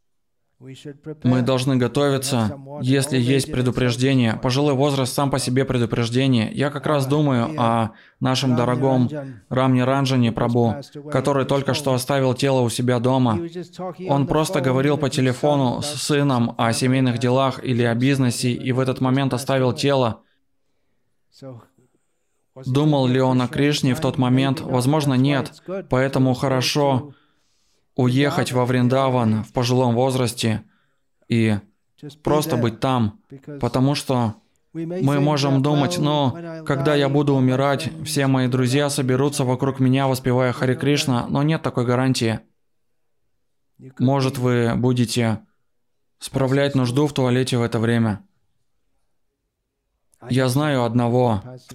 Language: Russian